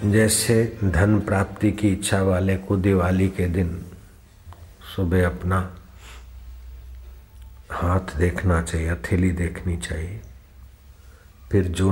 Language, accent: Hindi, native